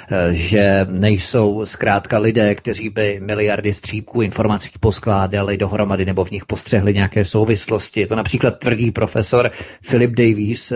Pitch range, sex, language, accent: 100-115 Hz, male, Czech, native